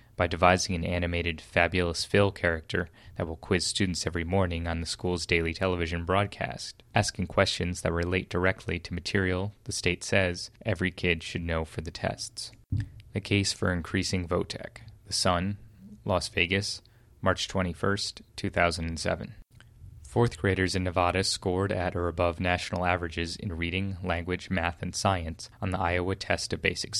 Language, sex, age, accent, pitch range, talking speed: English, male, 20-39, American, 90-105 Hz, 155 wpm